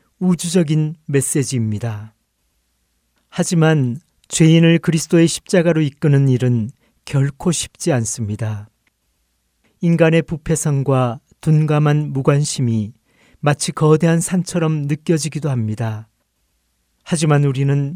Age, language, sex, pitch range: 40-59, Korean, male, 115-165 Hz